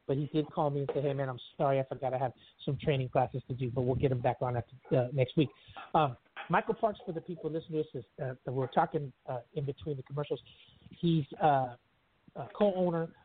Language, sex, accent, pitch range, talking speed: English, male, American, 135-170 Hz, 235 wpm